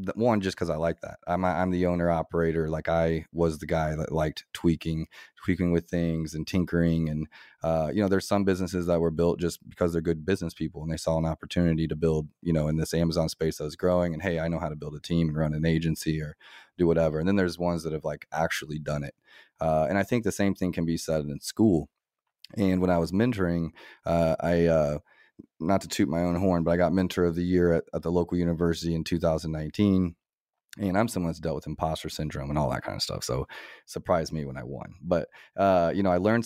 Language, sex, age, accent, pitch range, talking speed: English, male, 30-49, American, 80-90 Hz, 245 wpm